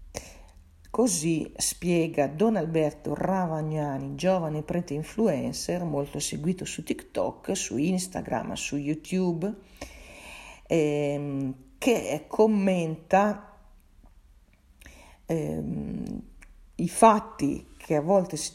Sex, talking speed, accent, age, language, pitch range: female, 85 wpm, native, 40-59, Italian, 140-185 Hz